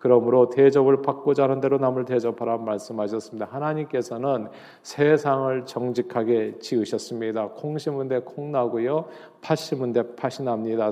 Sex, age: male, 40-59